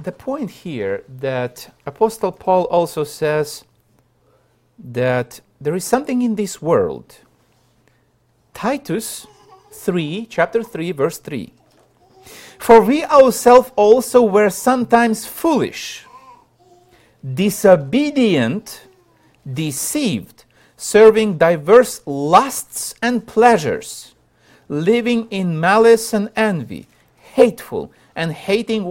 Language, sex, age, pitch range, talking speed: English, male, 50-69, 140-230 Hz, 90 wpm